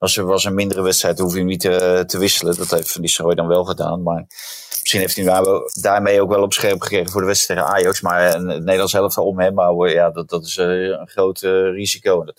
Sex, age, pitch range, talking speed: male, 30-49, 95-110 Hz, 235 wpm